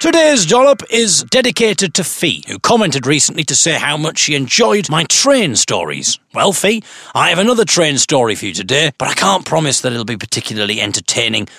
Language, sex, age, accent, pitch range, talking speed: English, male, 40-59, British, 125-195 Hz, 190 wpm